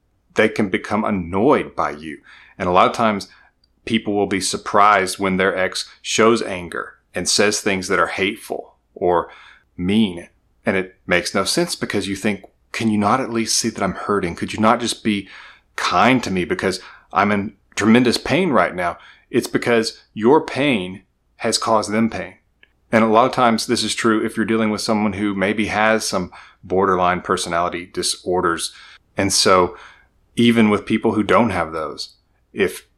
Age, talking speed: 30-49, 180 wpm